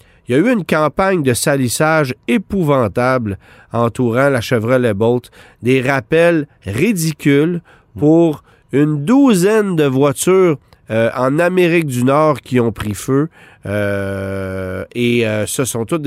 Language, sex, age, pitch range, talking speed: French, male, 40-59, 110-145 Hz, 135 wpm